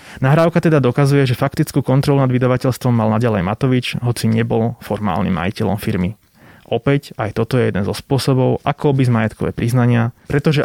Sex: male